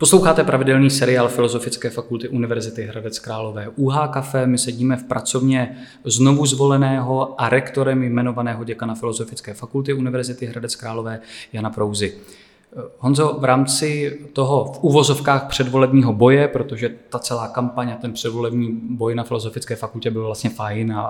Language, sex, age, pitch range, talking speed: Czech, male, 20-39, 115-135 Hz, 135 wpm